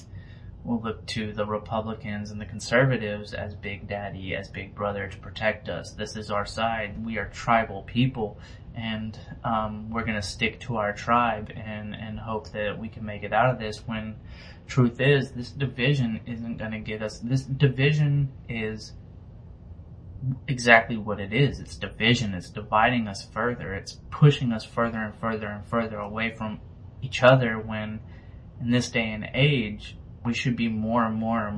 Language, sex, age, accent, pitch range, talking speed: English, male, 20-39, American, 105-120 Hz, 175 wpm